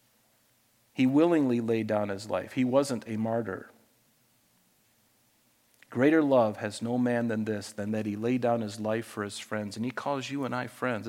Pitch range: 140-185 Hz